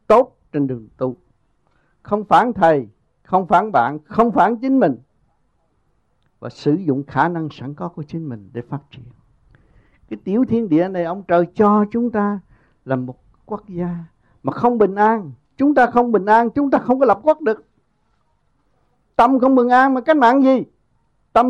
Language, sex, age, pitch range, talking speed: Vietnamese, male, 60-79, 130-220 Hz, 185 wpm